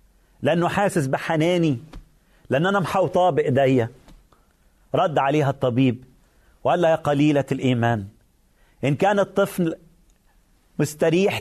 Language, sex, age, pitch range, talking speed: Arabic, male, 40-59, 130-175 Hz, 95 wpm